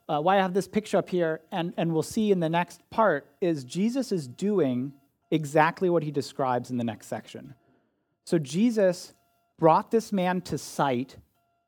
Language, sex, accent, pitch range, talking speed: English, male, American, 140-195 Hz, 180 wpm